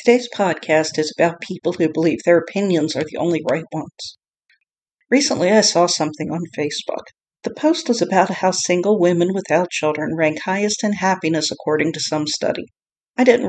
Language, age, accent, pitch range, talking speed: English, 50-69, American, 165-200 Hz, 175 wpm